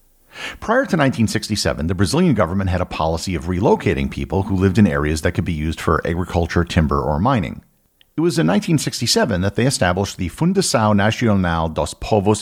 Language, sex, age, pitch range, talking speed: English, male, 50-69, 85-115 Hz, 180 wpm